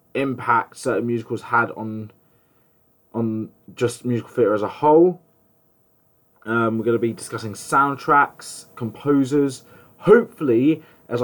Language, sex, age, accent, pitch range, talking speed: English, male, 20-39, British, 105-130 Hz, 115 wpm